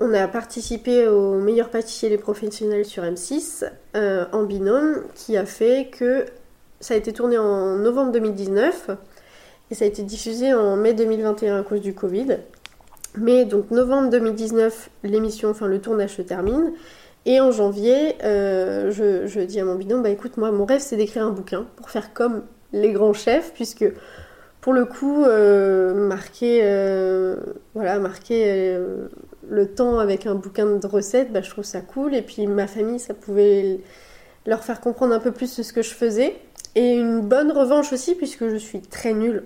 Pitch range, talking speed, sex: 200-240 Hz, 180 wpm, female